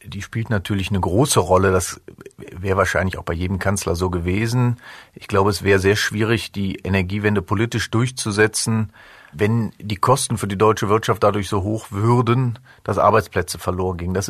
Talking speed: 170 wpm